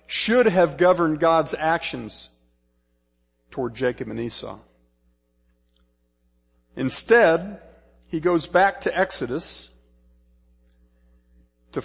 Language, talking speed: English, 80 wpm